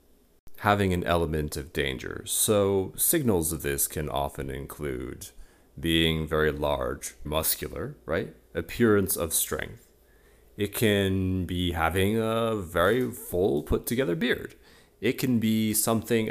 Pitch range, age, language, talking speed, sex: 80-110 Hz, 30-49, English, 125 wpm, male